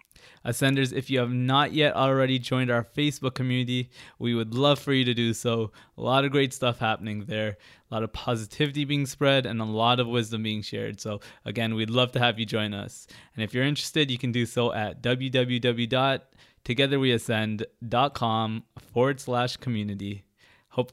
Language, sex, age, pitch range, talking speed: English, male, 20-39, 110-135 Hz, 180 wpm